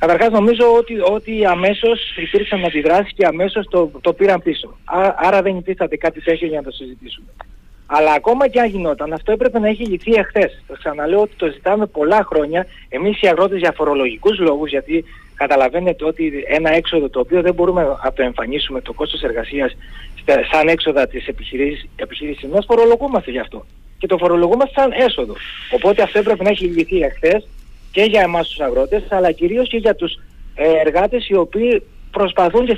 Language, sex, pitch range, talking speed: Greek, male, 155-220 Hz, 180 wpm